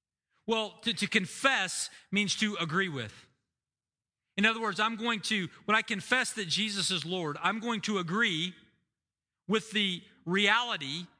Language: English